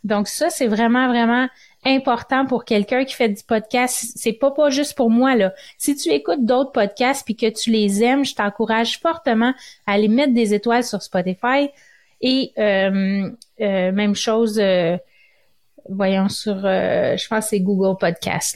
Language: French